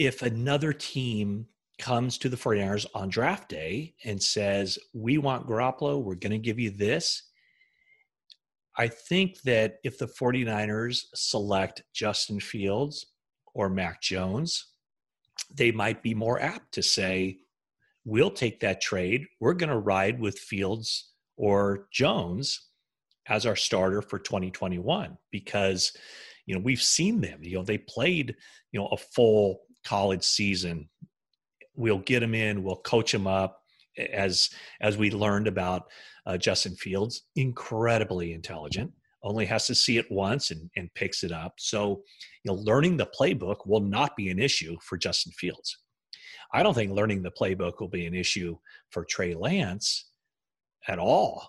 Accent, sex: American, male